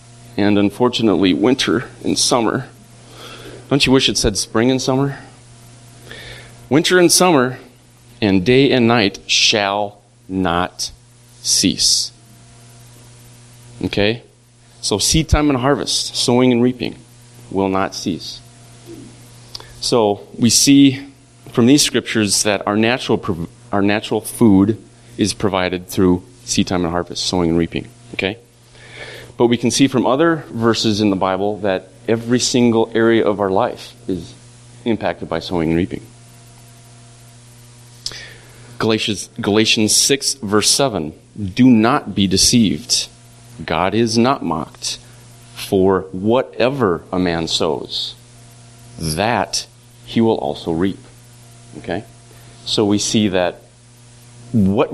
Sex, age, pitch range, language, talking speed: male, 30-49, 100-120 Hz, English, 120 wpm